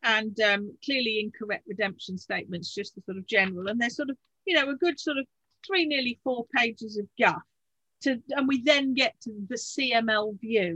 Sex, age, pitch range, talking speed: female, 50-69, 215-290 Hz, 200 wpm